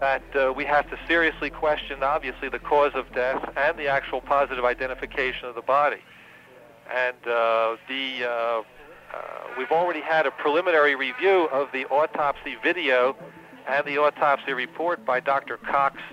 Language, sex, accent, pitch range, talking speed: English, male, American, 125-150 Hz, 155 wpm